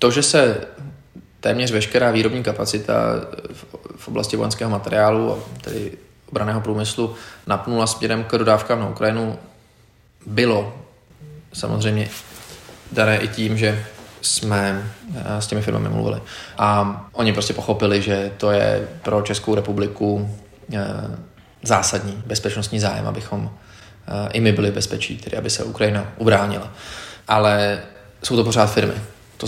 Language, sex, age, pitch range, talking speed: Czech, male, 20-39, 100-110 Hz, 120 wpm